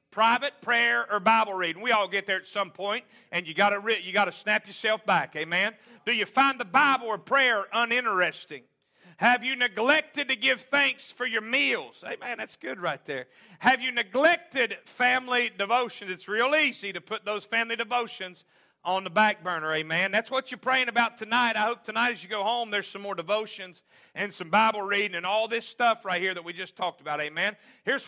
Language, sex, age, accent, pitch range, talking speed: English, male, 40-59, American, 195-250 Hz, 205 wpm